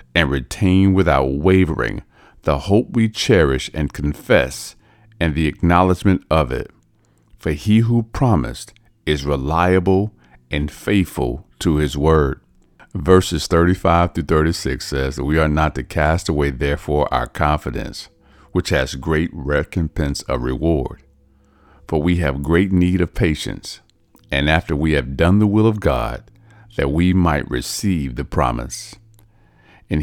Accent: American